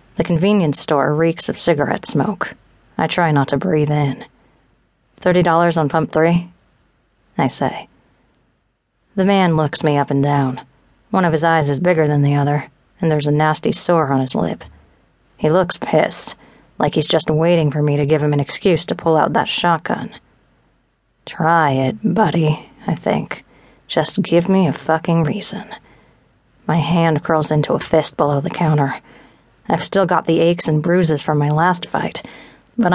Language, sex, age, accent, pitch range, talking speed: English, female, 30-49, American, 150-180 Hz, 170 wpm